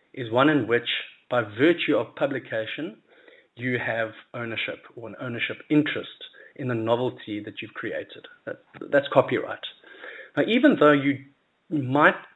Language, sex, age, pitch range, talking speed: English, male, 40-59, 120-150 Hz, 135 wpm